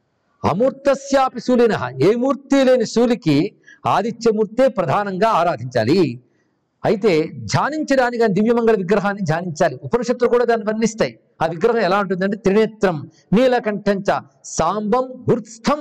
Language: Telugu